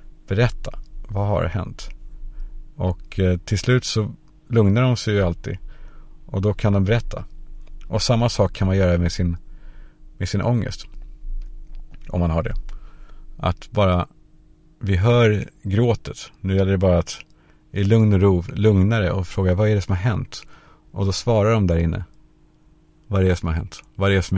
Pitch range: 95-120 Hz